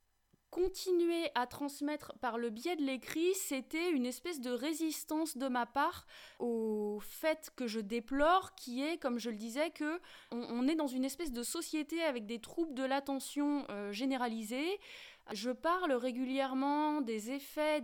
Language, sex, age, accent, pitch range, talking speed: French, female, 20-39, French, 230-305 Hz, 160 wpm